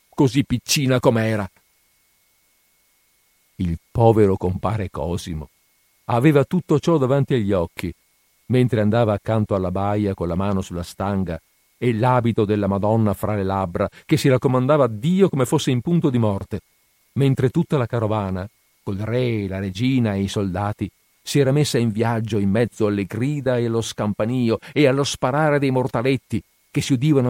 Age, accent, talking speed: 50-69, native, 160 wpm